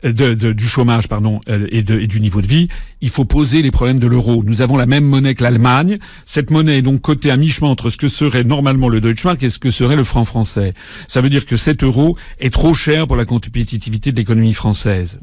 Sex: male